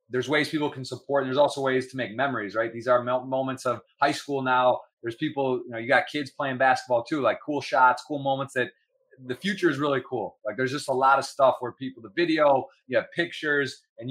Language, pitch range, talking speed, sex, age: English, 125-145 Hz, 240 wpm, male, 20-39